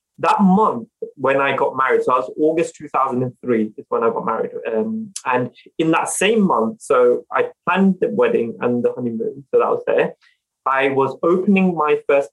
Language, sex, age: English, male, 20-39